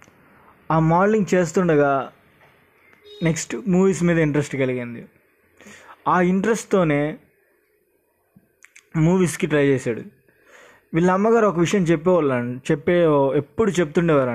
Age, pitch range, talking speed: 20-39, 150-190 Hz, 85 wpm